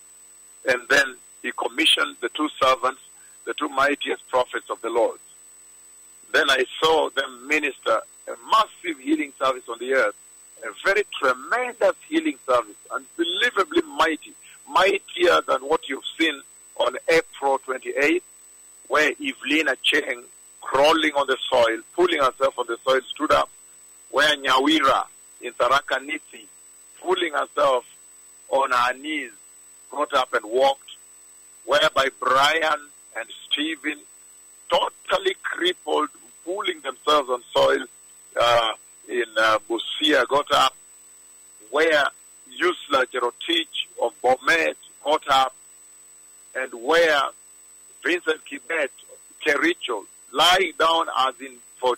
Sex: male